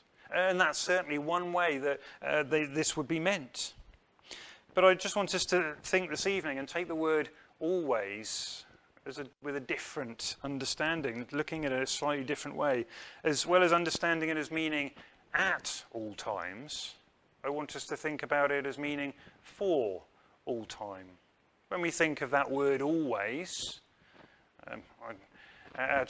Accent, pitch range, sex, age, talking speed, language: British, 125-160 Hz, male, 30-49, 165 wpm, English